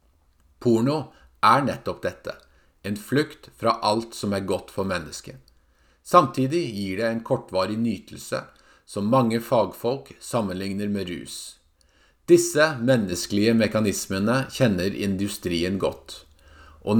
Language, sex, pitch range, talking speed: English, male, 80-115 Hz, 120 wpm